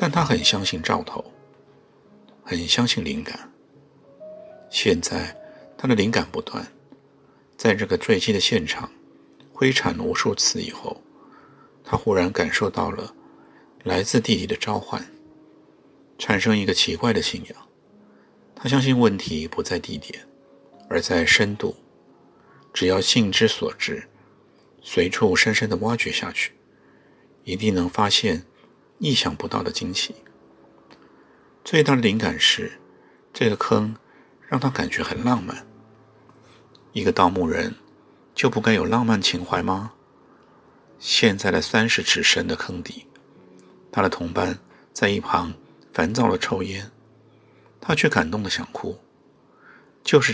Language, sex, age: Japanese, male, 50-69